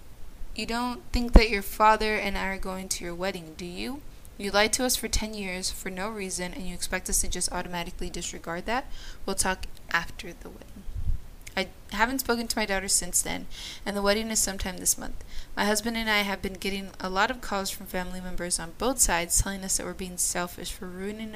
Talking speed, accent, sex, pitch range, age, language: 220 wpm, American, female, 180-215 Hz, 20-39, English